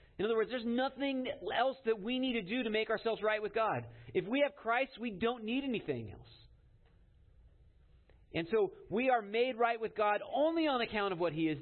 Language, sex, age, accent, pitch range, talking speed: English, male, 40-59, American, 150-225 Hz, 210 wpm